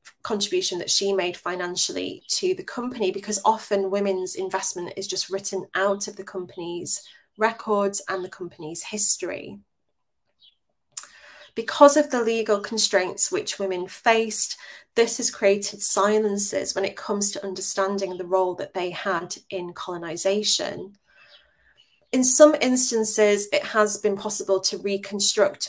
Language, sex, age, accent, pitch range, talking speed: English, female, 20-39, British, 185-210 Hz, 135 wpm